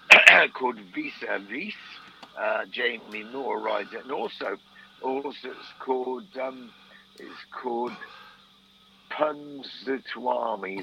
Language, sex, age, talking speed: English, male, 50-69, 100 wpm